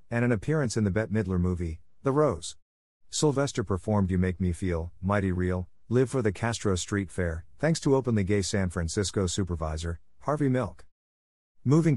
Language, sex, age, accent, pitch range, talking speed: English, male, 50-69, American, 90-115 Hz, 170 wpm